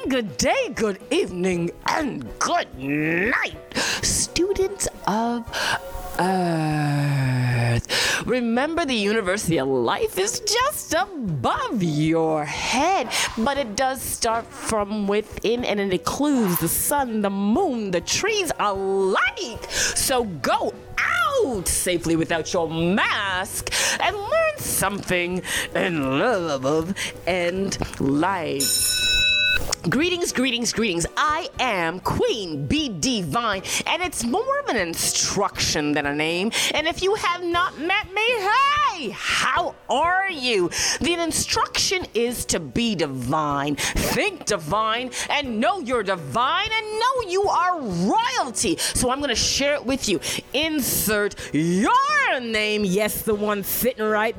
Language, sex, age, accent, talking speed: English, female, 30-49, American, 120 wpm